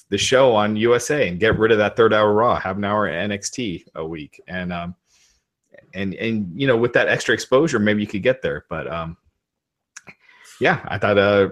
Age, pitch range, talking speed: 30-49, 90-110 Hz, 210 wpm